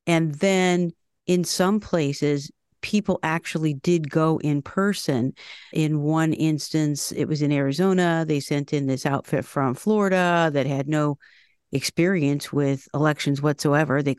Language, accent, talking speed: English, American, 140 wpm